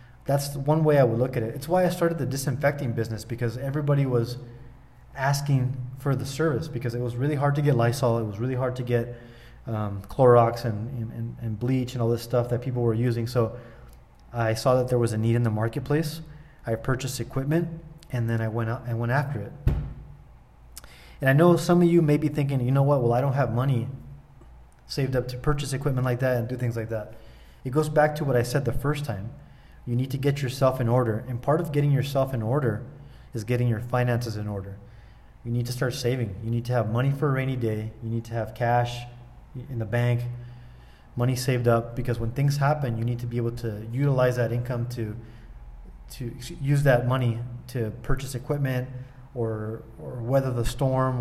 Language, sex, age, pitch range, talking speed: English, male, 20-39, 115-140 Hz, 210 wpm